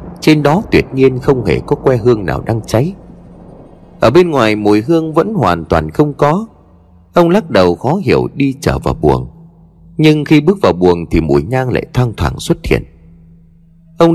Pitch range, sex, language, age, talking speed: 95-150 Hz, male, Vietnamese, 30-49, 190 wpm